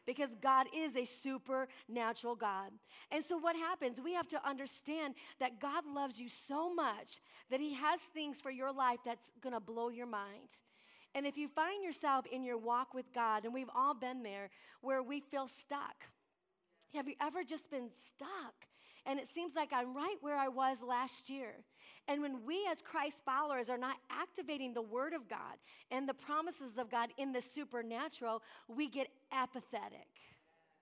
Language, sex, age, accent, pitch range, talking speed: English, female, 40-59, American, 260-310 Hz, 180 wpm